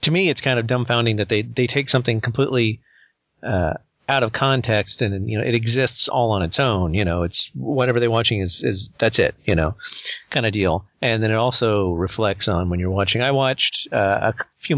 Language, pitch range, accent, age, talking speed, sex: English, 105-130 Hz, American, 40-59, 220 wpm, male